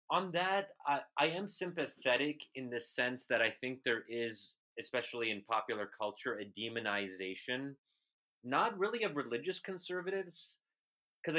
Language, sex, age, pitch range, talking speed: English, male, 30-49, 115-160 Hz, 135 wpm